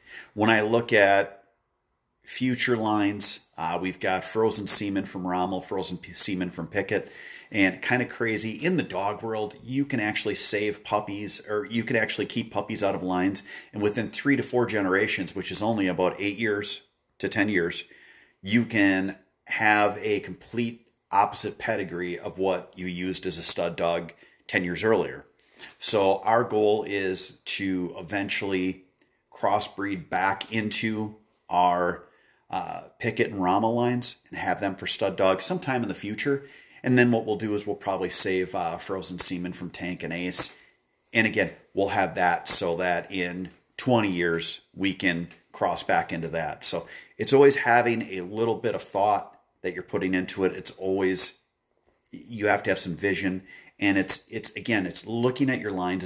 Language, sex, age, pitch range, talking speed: English, male, 40-59, 95-110 Hz, 170 wpm